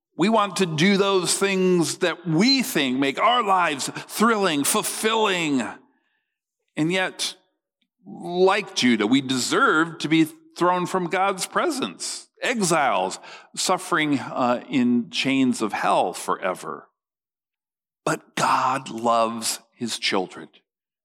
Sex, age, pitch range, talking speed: male, 50-69, 165-220 Hz, 110 wpm